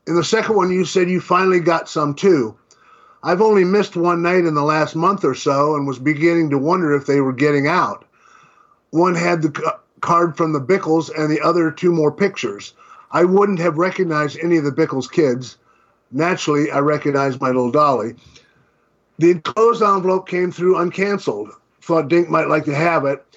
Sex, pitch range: male, 145-175 Hz